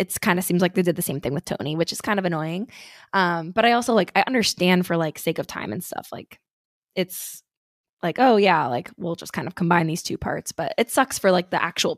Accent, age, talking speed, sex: American, 20-39, 260 wpm, female